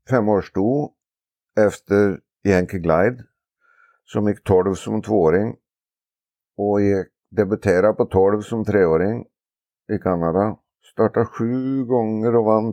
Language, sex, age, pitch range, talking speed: Swedish, male, 50-69, 80-105 Hz, 110 wpm